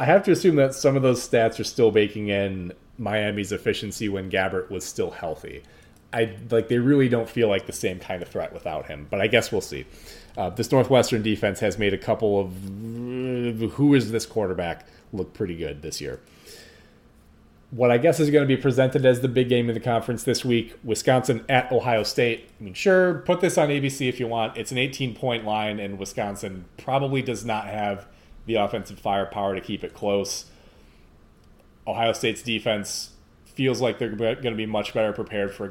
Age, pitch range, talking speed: 30-49, 100-120 Hz, 200 wpm